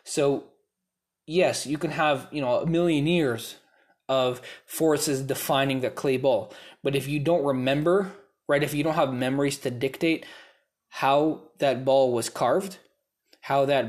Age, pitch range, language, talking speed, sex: 20-39, 130-155 Hz, English, 155 wpm, male